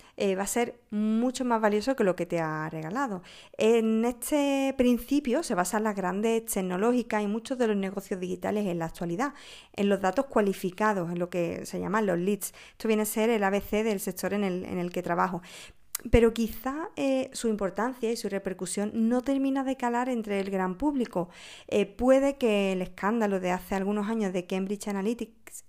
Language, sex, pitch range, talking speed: Spanish, female, 190-240 Hz, 190 wpm